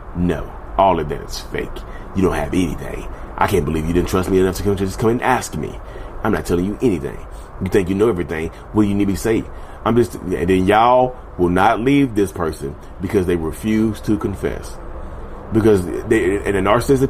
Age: 30-49